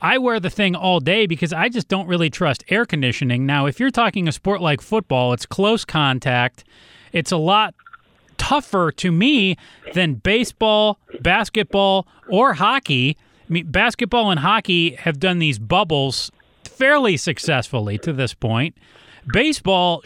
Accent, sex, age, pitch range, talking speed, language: American, male, 30-49, 145-205 Hz, 155 wpm, English